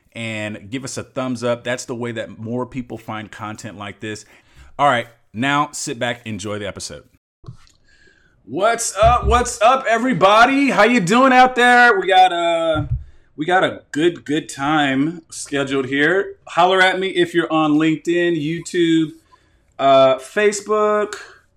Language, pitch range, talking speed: English, 120-180 Hz, 145 wpm